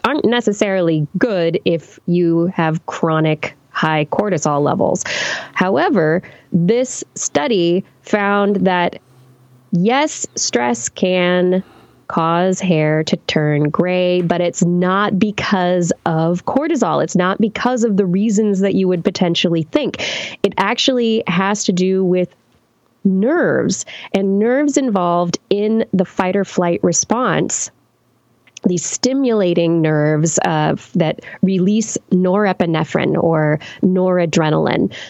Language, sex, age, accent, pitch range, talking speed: English, female, 20-39, American, 170-215 Hz, 110 wpm